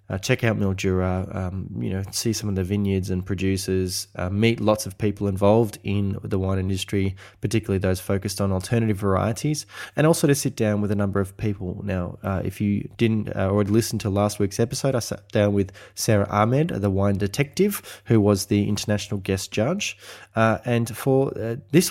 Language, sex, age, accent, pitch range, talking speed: English, male, 20-39, Australian, 95-110 Hz, 195 wpm